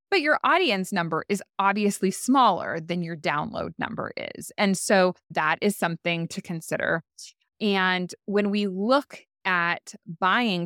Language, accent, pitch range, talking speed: English, American, 170-220 Hz, 140 wpm